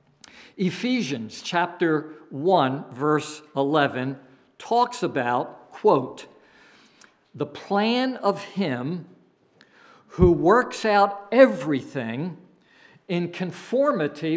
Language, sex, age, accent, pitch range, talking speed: English, male, 60-79, American, 145-210 Hz, 75 wpm